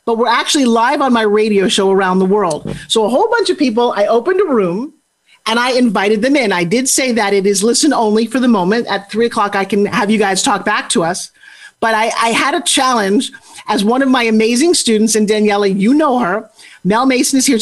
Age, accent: 40-59, American